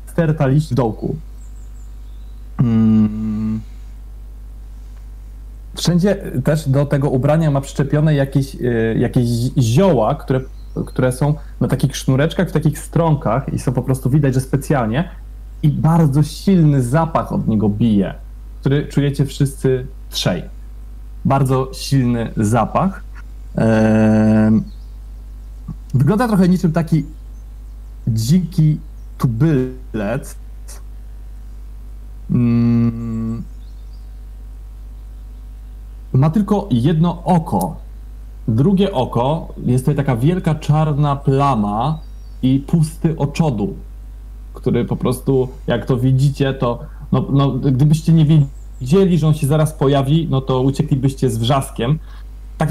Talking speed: 100 wpm